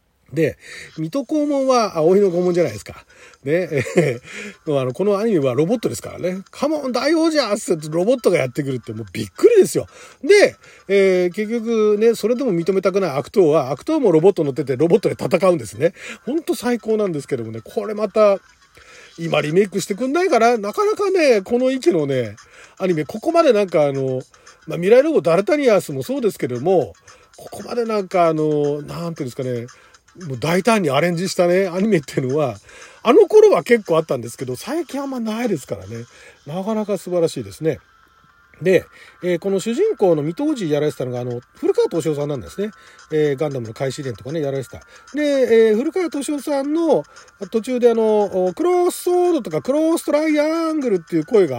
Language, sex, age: Japanese, male, 40-59